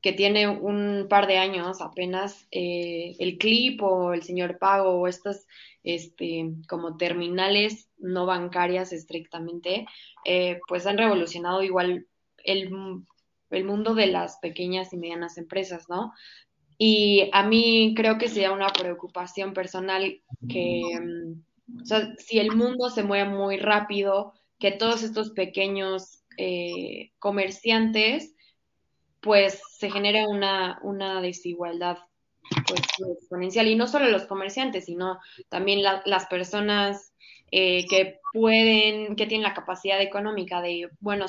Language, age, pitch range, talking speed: Spanish, 20-39, 180-205 Hz, 130 wpm